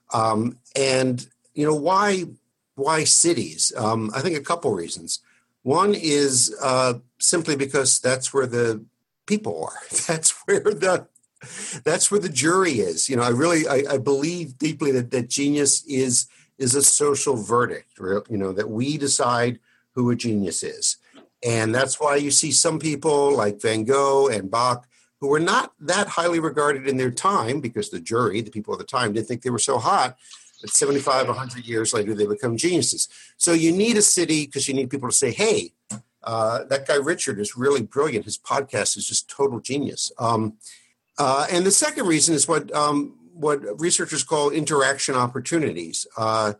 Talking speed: 180 wpm